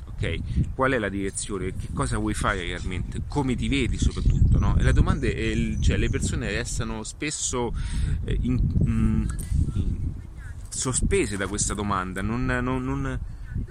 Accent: native